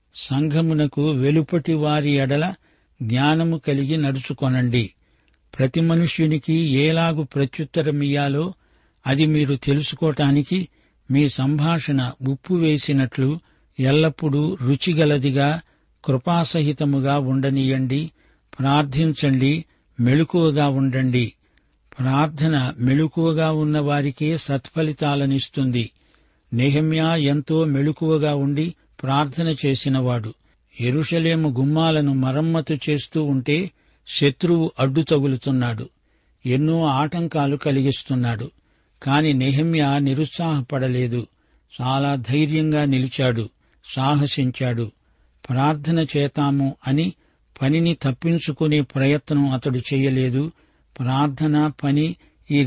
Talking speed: 70 wpm